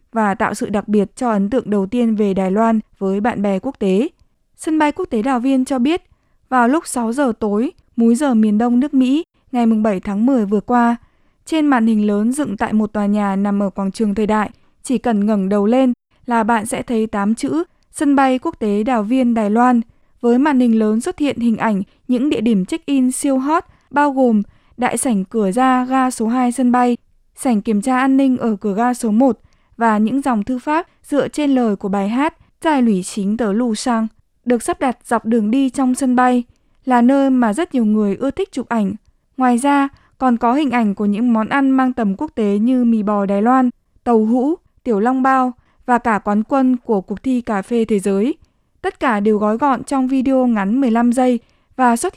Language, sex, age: Vietnamese, female, 20-39